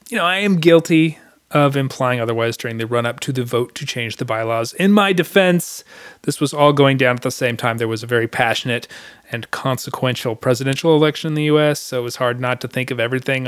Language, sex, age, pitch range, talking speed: English, male, 30-49, 125-160 Hz, 225 wpm